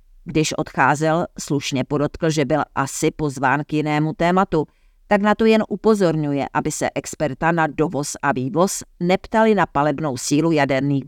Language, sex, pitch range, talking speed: Czech, female, 145-175 Hz, 150 wpm